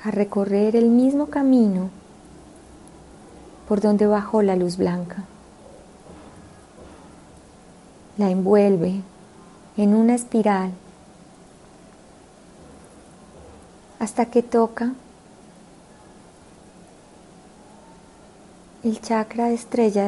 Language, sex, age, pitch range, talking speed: Spanish, female, 30-49, 195-225 Hz, 65 wpm